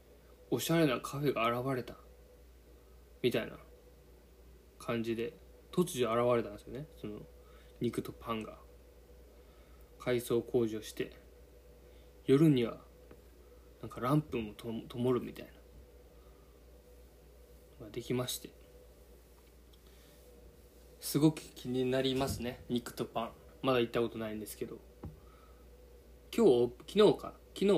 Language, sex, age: Japanese, male, 20-39